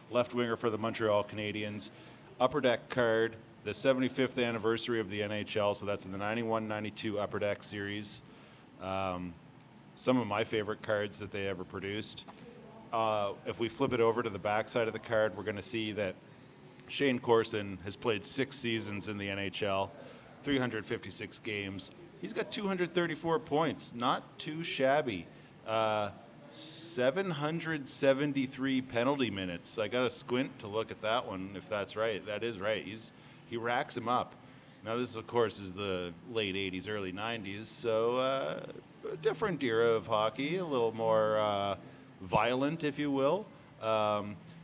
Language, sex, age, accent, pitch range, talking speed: English, male, 30-49, American, 105-130 Hz, 160 wpm